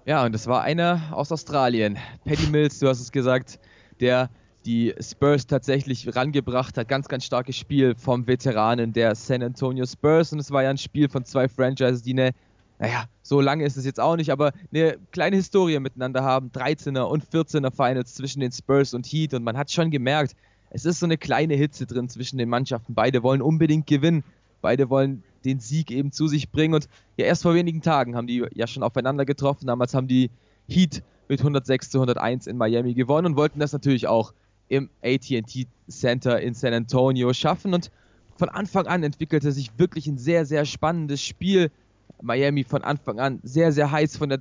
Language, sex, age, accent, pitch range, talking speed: German, male, 20-39, German, 125-150 Hz, 195 wpm